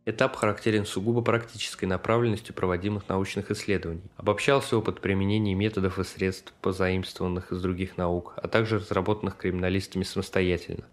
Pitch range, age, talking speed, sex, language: 95-110 Hz, 20-39, 125 wpm, male, Russian